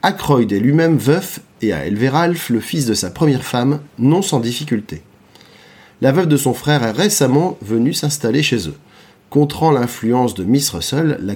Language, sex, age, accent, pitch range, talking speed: French, male, 30-49, French, 115-155 Hz, 175 wpm